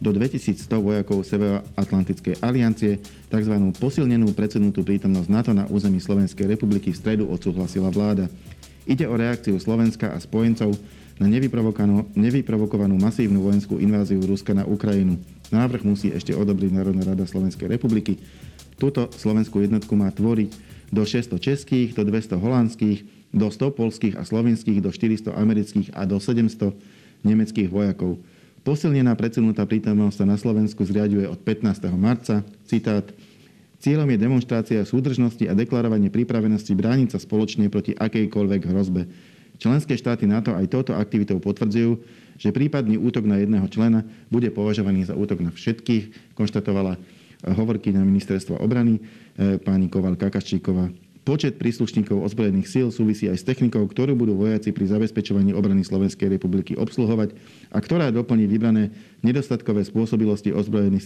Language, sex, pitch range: Slovak, male, 100-115 Hz